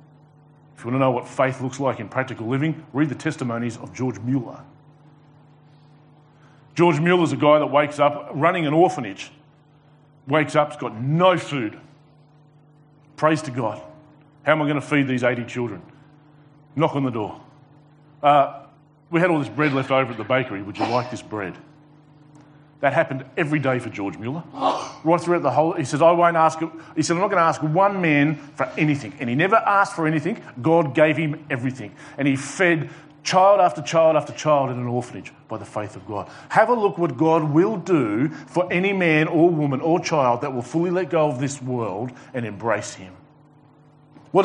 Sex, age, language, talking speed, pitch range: male, 40-59, English, 195 wpm, 135-160 Hz